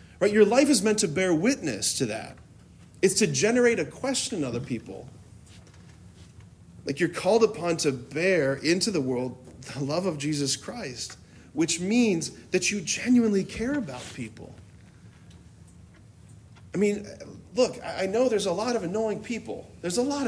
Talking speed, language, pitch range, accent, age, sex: 155 wpm, English, 120-190 Hz, American, 40-59, male